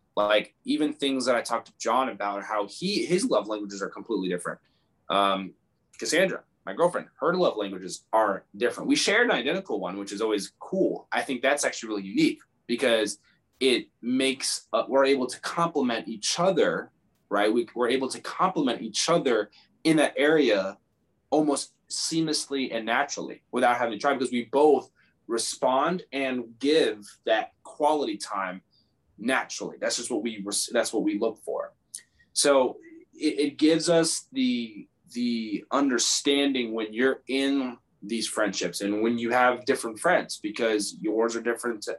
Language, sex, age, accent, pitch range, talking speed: English, male, 20-39, American, 105-150 Hz, 160 wpm